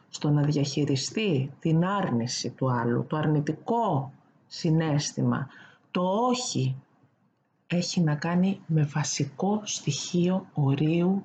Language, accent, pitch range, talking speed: Greek, native, 145-200 Hz, 100 wpm